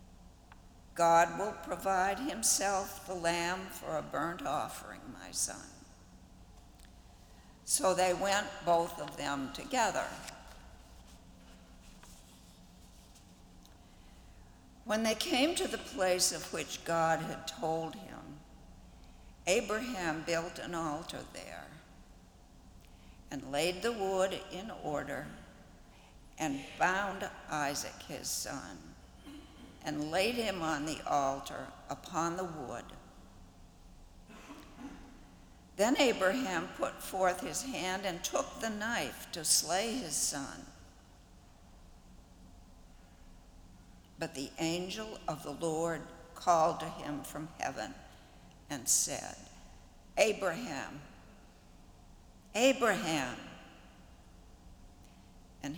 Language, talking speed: English, 95 wpm